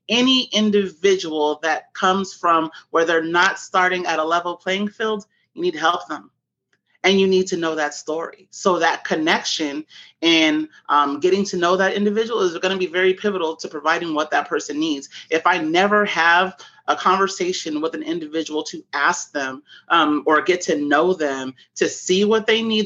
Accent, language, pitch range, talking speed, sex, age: American, English, 155-205 Hz, 185 wpm, male, 30-49